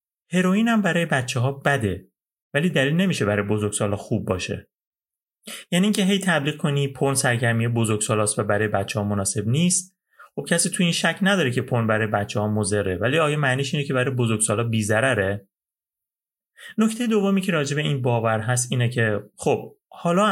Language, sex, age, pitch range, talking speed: Persian, male, 30-49, 105-150 Hz, 170 wpm